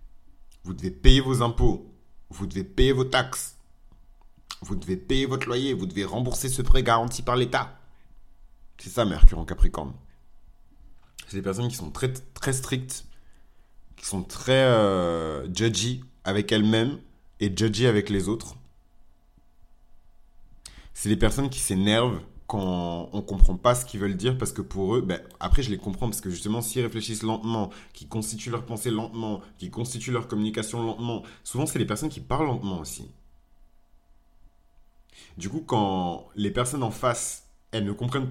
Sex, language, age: male, French, 30-49